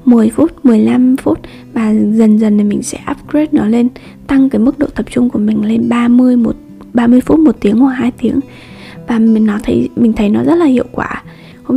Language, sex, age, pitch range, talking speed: Vietnamese, female, 10-29, 215-265 Hz, 220 wpm